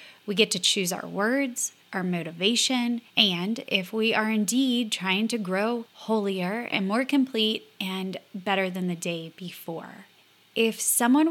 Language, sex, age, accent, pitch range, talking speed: English, female, 20-39, American, 180-220 Hz, 150 wpm